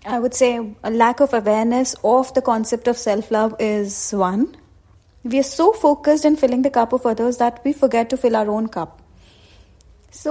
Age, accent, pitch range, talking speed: 30-49, Indian, 220-290 Hz, 190 wpm